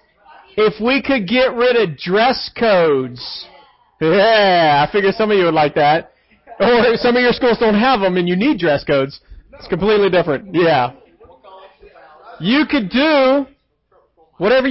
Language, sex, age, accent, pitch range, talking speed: English, male, 40-59, American, 180-250 Hz, 155 wpm